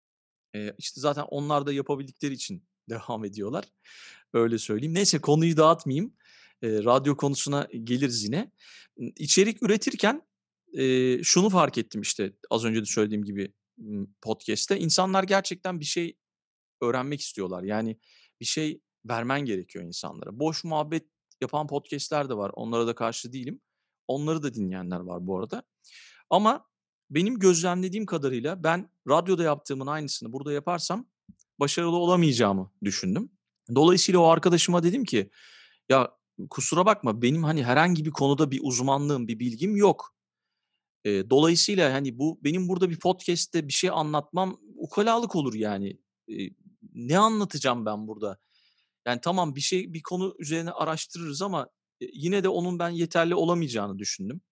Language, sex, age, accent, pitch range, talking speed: Turkish, male, 40-59, native, 120-175 Hz, 135 wpm